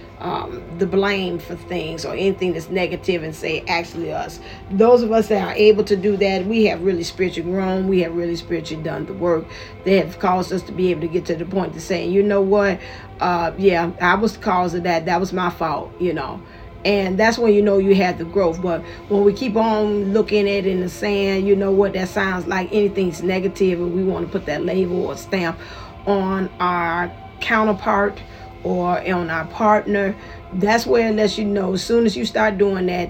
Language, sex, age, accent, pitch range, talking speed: English, female, 40-59, American, 175-200 Hz, 220 wpm